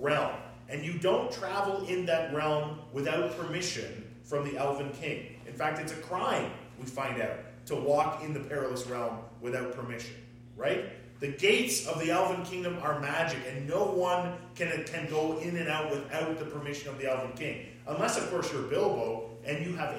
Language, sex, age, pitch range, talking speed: English, male, 40-59, 120-165 Hz, 190 wpm